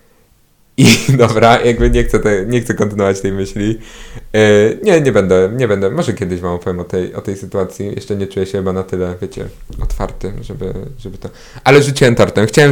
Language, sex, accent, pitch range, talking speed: Polish, male, native, 95-115 Hz, 195 wpm